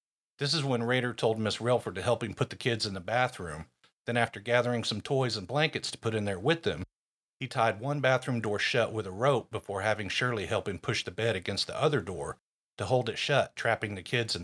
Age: 50-69